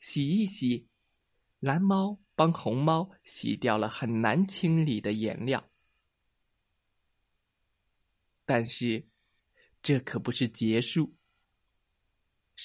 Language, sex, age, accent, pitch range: Chinese, male, 20-39, native, 110-185 Hz